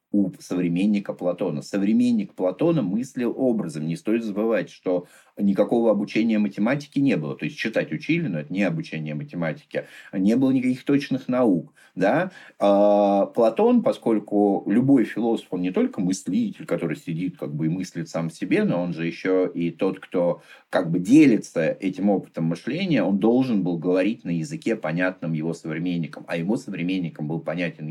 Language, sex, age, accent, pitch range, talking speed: Russian, male, 30-49, native, 90-135 Hz, 155 wpm